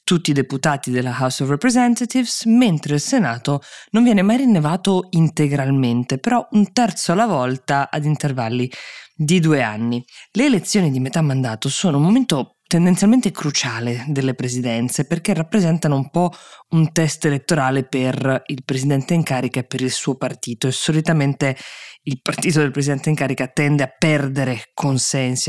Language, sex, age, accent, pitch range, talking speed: Italian, female, 20-39, native, 130-160 Hz, 155 wpm